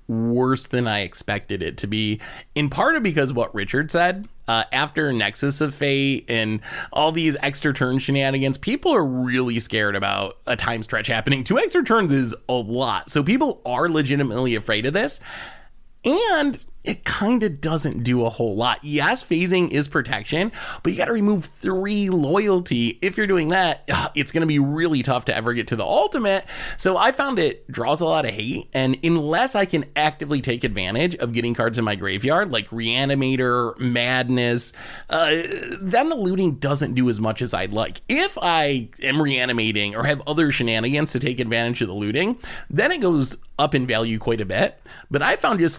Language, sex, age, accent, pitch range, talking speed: English, male, 30-49, American, 115-155 Hz, 190 wpm